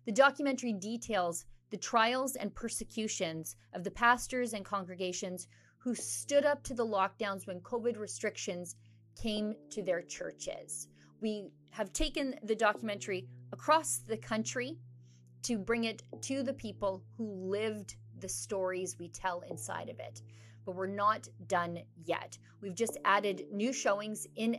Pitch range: 170-230 Hz